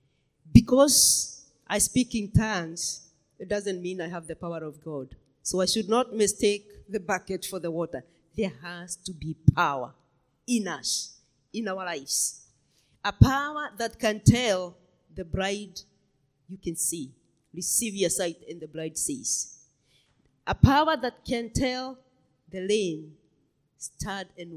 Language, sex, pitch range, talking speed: English, female, 155-230 Hz, 145 wpm